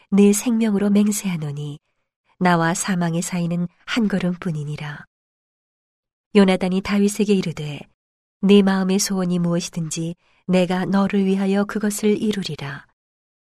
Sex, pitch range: female, 170-200 Hz